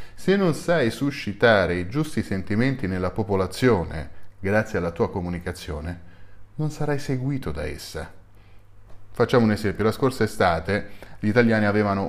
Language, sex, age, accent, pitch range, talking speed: Italian, male, 30-49, native, 95-115 Hz, 135 wpm